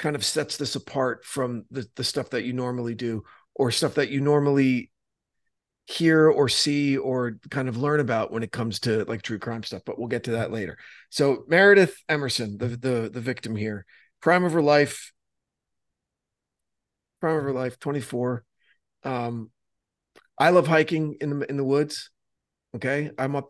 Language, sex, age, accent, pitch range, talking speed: English, male, 40-59, American, 120-145 Hz, 175 wpm